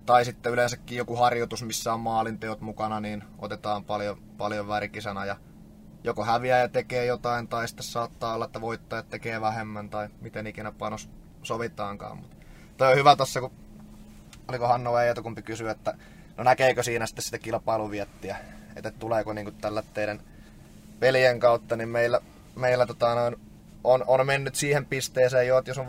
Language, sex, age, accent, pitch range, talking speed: Finnish, male, 20-39, native, 105-120 Hz, 165 wpm